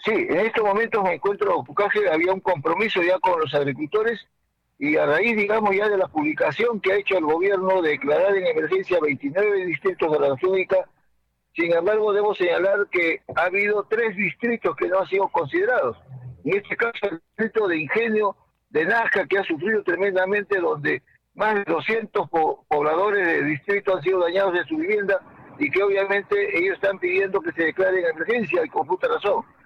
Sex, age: male, 50-69